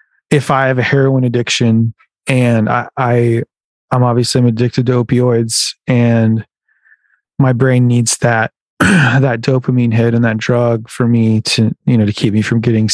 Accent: American